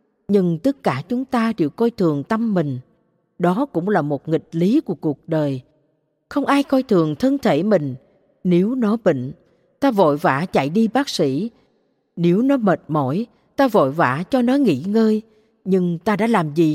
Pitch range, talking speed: 170-235 Hz, 185 wpm